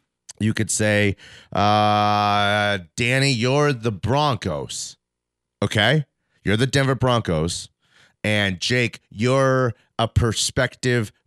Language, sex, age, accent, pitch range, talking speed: English, male, 30-49, American, 90-125 Hz, 95 wpm